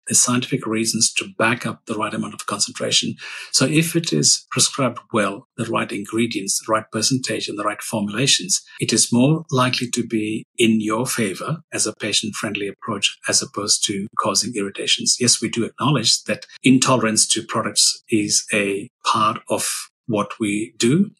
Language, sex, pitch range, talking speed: English, male, 105-130 Hz, 165 wpm